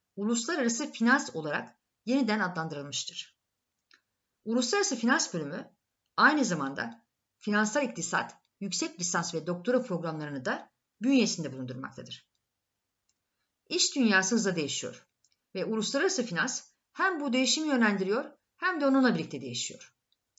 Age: 50-69